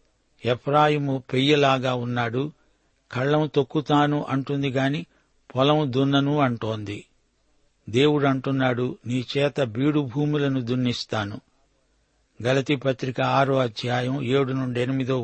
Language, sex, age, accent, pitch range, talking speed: Telugu, male, 60-79, native, 125-145 Hz, 95 wpm